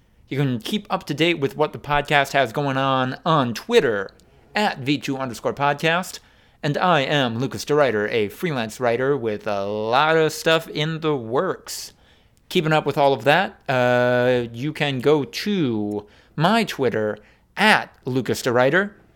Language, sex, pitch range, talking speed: English, male, 120-170 Hz, 155 wpm